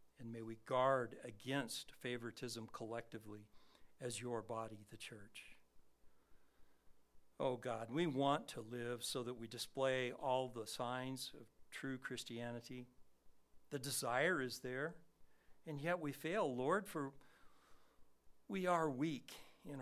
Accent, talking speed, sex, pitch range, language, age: American, 125 wpm, male, 100-135 Hz, English, 60-79